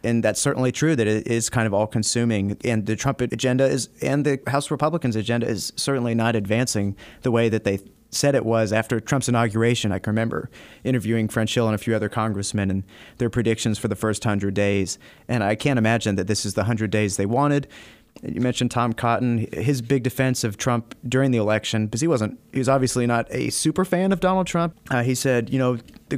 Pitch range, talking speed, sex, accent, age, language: 110-130 Hz, 220 wpm, male, American, 30-49, English